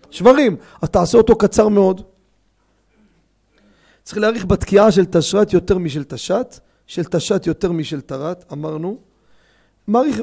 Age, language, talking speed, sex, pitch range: 40-59, Hebrew, 125 wpm, male, 155-220 Hz